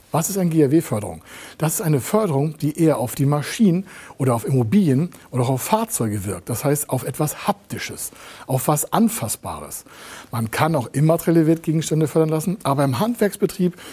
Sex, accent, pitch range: male, German, 125-160 Hz